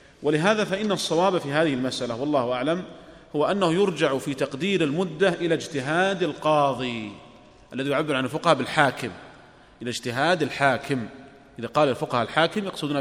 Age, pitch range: 40-59, 140-175 Hz